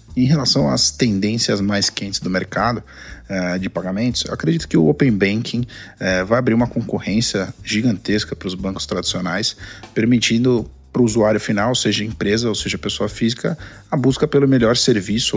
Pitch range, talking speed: 105-125 Hz, 160 wpm